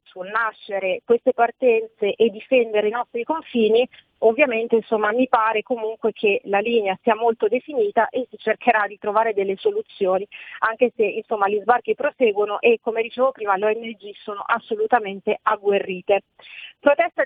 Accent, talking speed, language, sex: native, 150 wpm, Italian, female